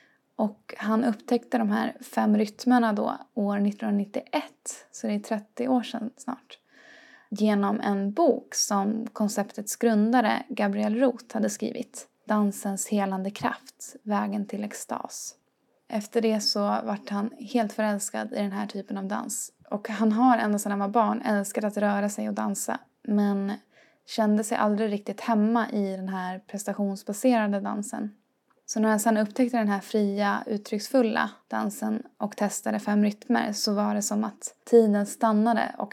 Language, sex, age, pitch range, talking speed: Swedish, female, 20-39, 205-235 Hz, 155 wpm